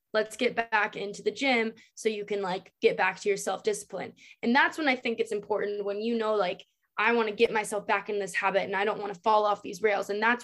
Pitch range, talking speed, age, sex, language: 205-245 Hz, 265 wpm, 20-39, female, English